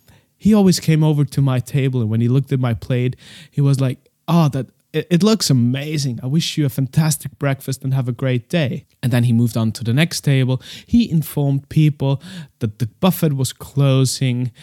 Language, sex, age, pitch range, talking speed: English, male, 30-49, 115-150 Hz, 210 wpm